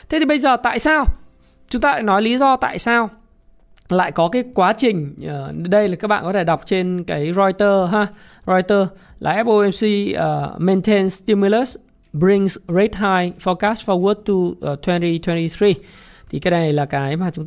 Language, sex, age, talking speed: Vietnamese, male, 20-39, 175 wpm